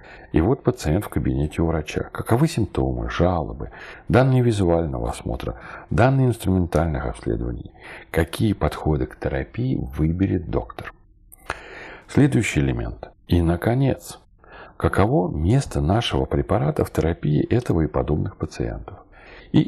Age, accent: 40-59, native